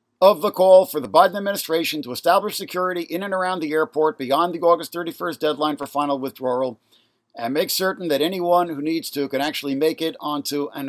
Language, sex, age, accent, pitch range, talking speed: English, male, 50-69, American, 140-200 Hz, 205 wpm